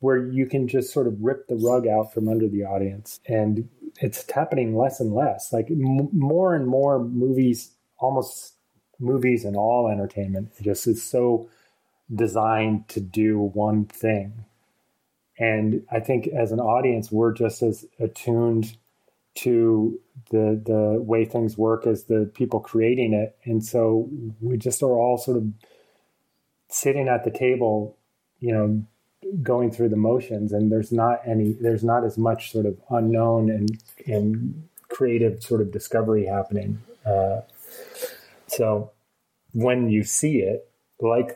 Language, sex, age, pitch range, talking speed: English, male, 30-49, 105-125 Hz, 150 wpm